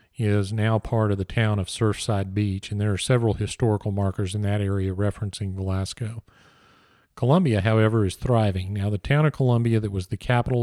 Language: English